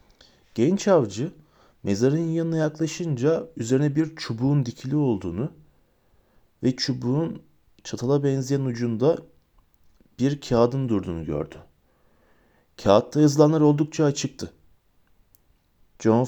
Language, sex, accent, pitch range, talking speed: Turkish, male, native, 110-155 Hz, 90 wpm